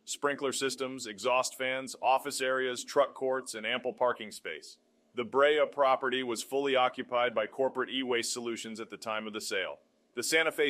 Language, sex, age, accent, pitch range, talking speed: English, male, 30-49, American, 115-135 Hz, 175 wpm